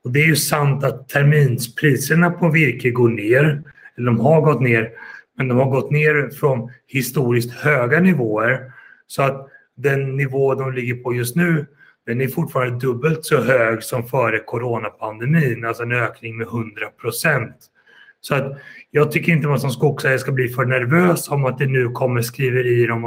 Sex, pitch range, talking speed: male, 120-150 Hz, 175 wpm